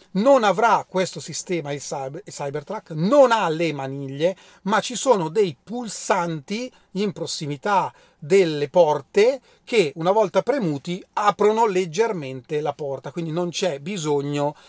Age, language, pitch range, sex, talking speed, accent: 30-49, Italian, 145-190 Hz, male, 130 wpm, native